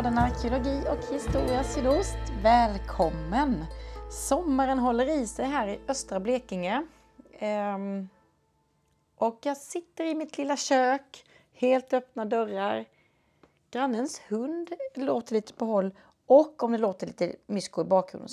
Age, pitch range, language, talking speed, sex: 30-49, 220-285 Hz, Swedish, 130 wpm, female